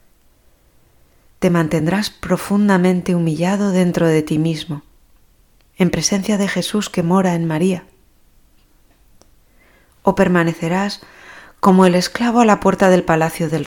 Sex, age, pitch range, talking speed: female, 30-49, 155-185 Hz, 120 wpm